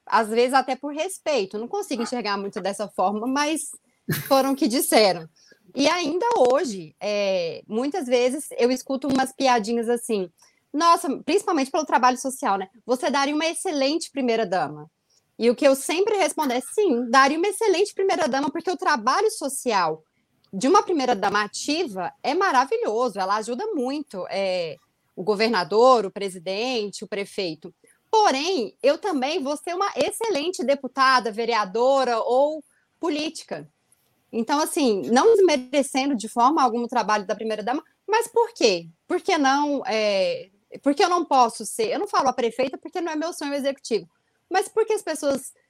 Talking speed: 155 wpm